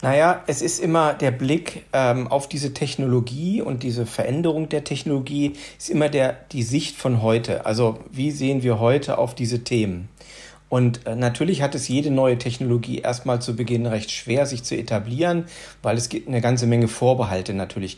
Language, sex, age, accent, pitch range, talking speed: German, male, 40-59, German, 115-145 Hz, 180 wpm